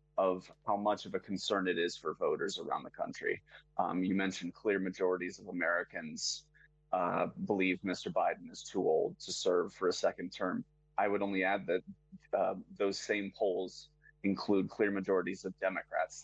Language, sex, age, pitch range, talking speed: English, male, 30-49, 95-150 Hz, 175 wpm